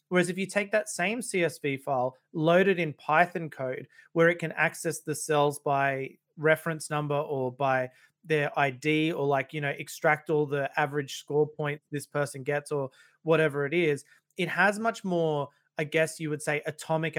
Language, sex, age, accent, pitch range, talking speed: English, male, 30-49, Australian, 140-160 Hz, 180 wpm